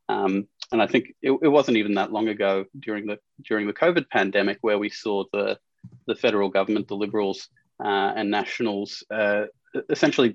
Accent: Australian